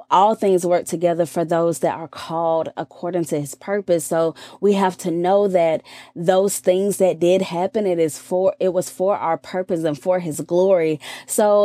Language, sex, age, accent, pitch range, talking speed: English, female, 20-39, American, 165-200 Hz, 190 wpm